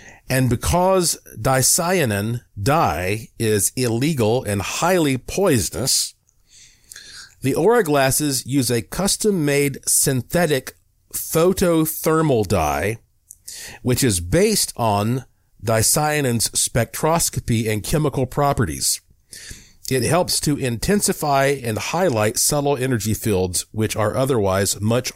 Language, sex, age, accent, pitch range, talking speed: English, male, 50-69, American, 105-140 Hz, 95 wpm